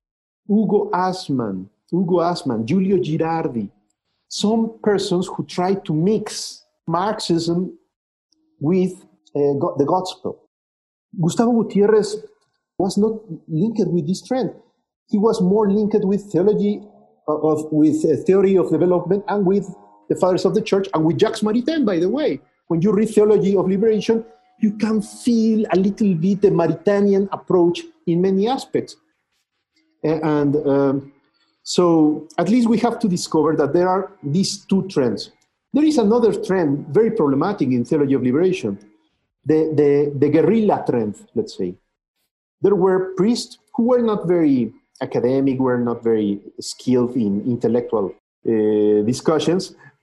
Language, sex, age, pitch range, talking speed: English, male, 50-69, 150-210 Hz, 140 wpm